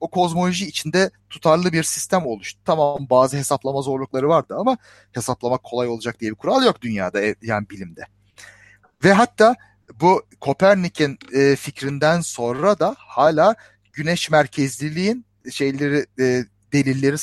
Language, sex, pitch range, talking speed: Turkish, male, 125-170 Hz, 120 wpm